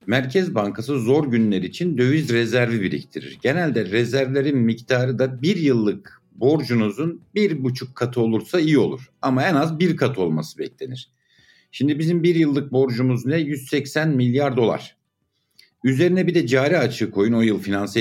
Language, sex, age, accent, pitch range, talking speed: Turkish, male, 60-79, native, 105-140 Hz, 155 wpm